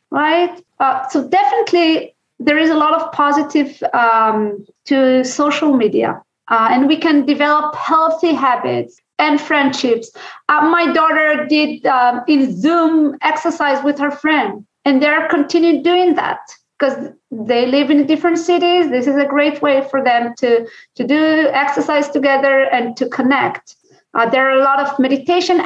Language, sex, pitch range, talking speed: English, female, 260-320 Hz, 160 wpm